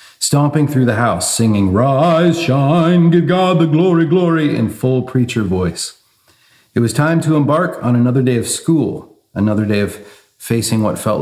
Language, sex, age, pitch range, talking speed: English, male, 40-59, 95-120 Hz, 170 wpm